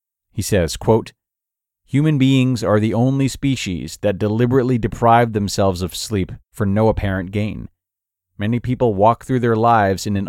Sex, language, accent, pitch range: male, English, American, 95-135 Hz